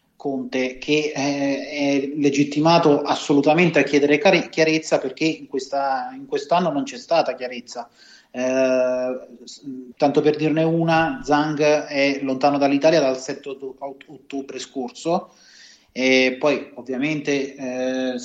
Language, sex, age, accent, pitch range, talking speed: Italian, male, 30-49, native, 135-160 Hz, 110 wpm